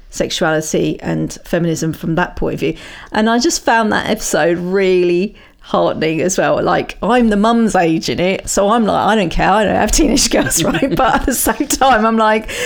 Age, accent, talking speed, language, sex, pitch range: 40-59, British, 215 wpm, English, female, 175-235 Hz